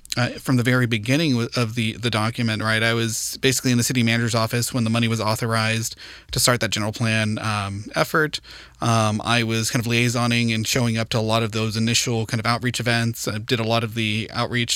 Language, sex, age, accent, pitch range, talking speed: English, male, 30-49, American, 115-130 Hz, 230 wpm